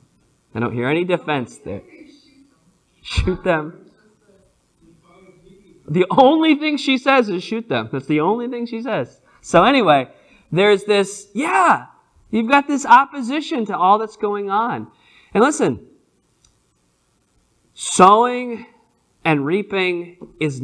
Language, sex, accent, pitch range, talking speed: English, male, American, 130-180 Hz, 120 wpm